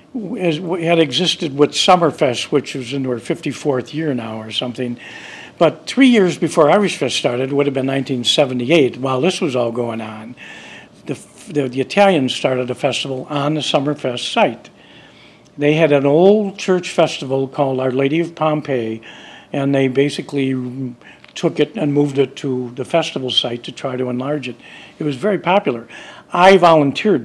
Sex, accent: male, American